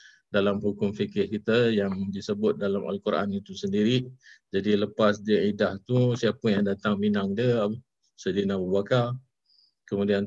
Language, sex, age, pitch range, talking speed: Malay, male, 50-69, 100-120 Hz, 140 wpm